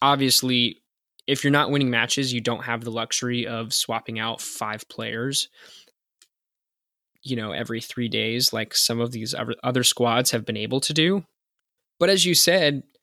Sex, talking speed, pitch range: male, 165 wpm, 120-160 Hz